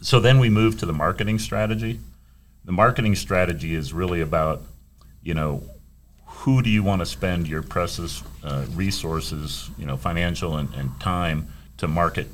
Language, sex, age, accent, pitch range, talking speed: English, male, 40-59, American, 75-100 Hz, 165 wpm